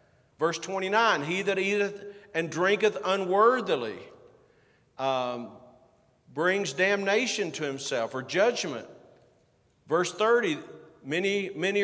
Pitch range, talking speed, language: 175-225 Hz, 100 wpm, English